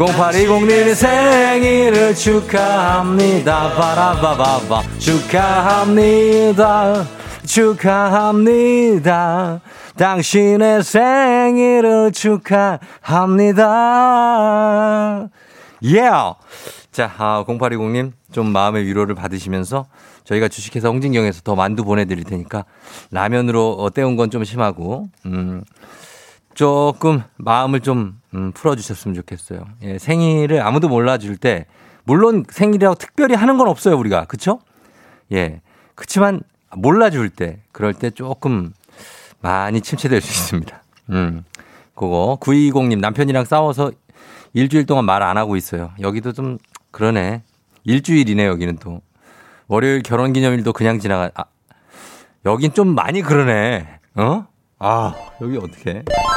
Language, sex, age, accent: Korean, male, 30-49, native